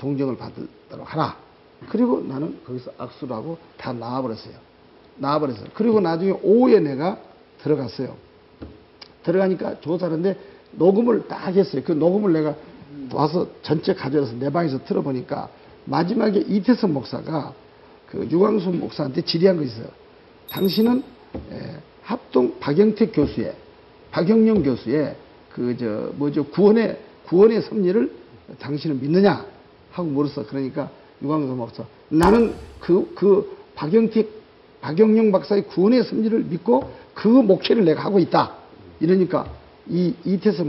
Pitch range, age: 145-215 Hz, 50-69